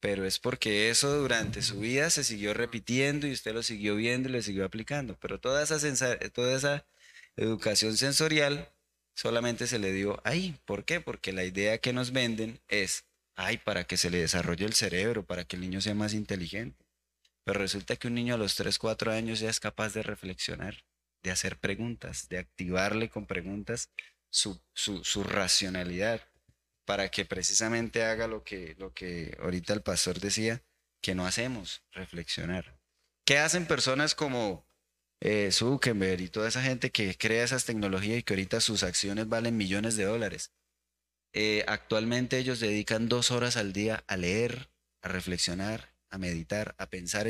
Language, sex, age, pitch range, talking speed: Spanish, male, 20-39, 90-120 Hz, 170 wpm